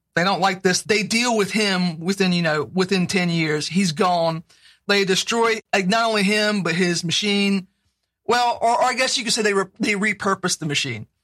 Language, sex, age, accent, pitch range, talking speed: English, male, 40-59, American, 175-215 Hz, 210 wpm